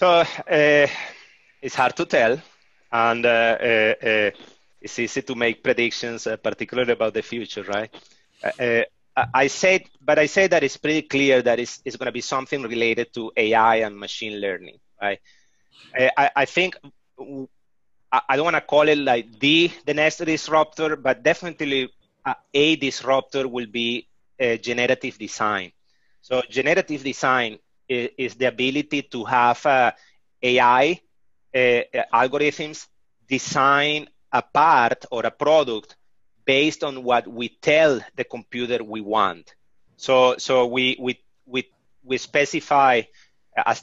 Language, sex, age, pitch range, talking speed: English, male, 30-49, 115-140 Hz, 145 wpm